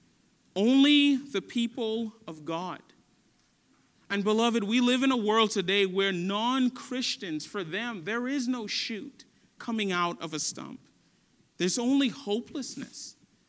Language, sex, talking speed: English, male, 130 wpm